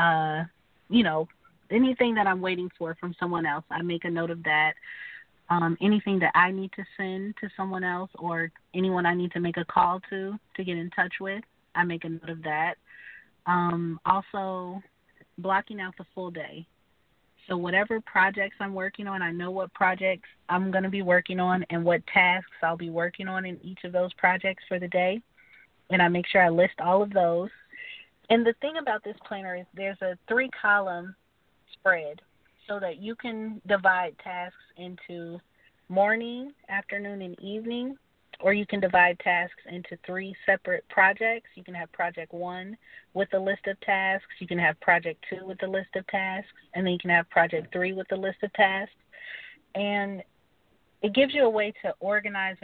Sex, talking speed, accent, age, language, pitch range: female, 190 wpm, American, 30-49, English, 175-200 Hz